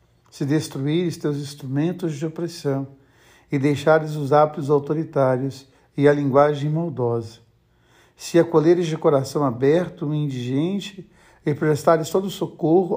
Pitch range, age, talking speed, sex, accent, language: 130-160 Hz, 60-79, 125 wpm, male, Brazilian, Portuguese